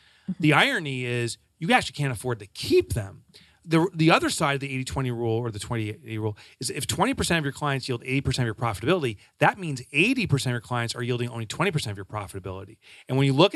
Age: 30-49